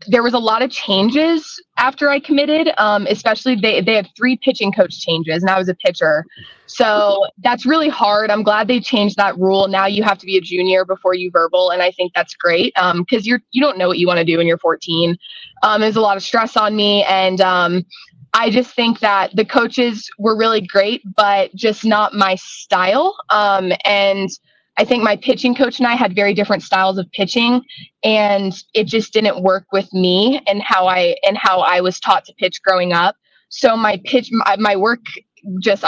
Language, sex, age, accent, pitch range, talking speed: English, female, 20-39, American, 185-220 Hz, 210 wpm